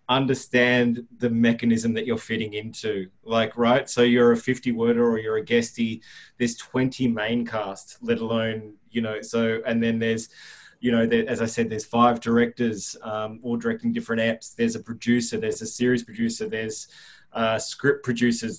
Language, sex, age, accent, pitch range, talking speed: English, male, 20-39, Australian, 115-140 Hz, 180 wpm